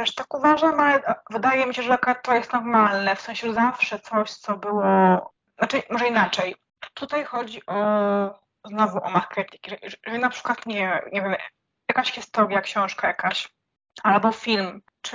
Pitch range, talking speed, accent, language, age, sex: 210-245 Hz, 150 wpm, native, Polish, 20-39, female